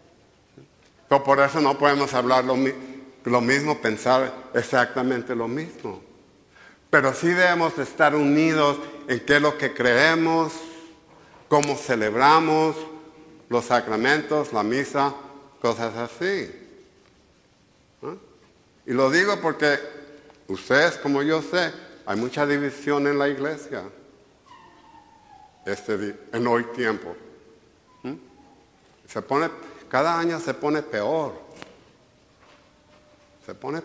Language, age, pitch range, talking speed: English, 60-79, 125-150 Hz, 100 wpm